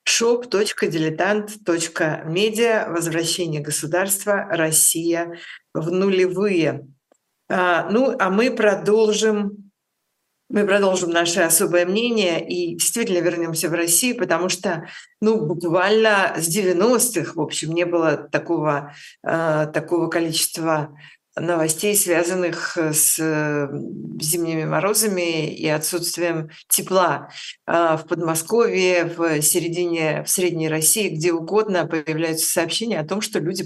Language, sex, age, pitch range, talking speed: Russian, female, 50-69, 160-185 Hz, 100 wpm